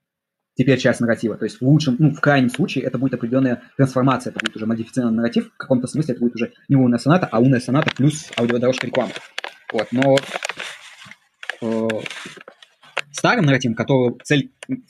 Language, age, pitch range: Russian, 20-39, 115-135 Hz